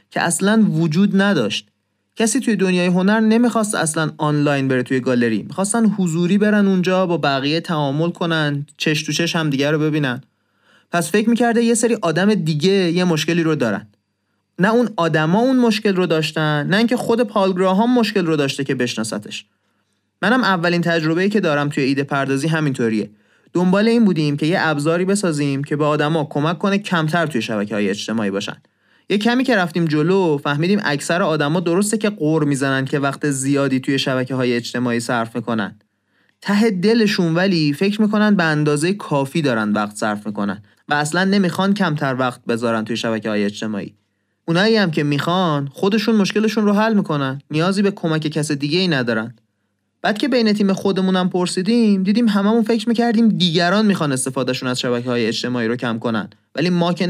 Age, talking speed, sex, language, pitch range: 30-49, 170 wpm, male, Persian, 130-195 Hz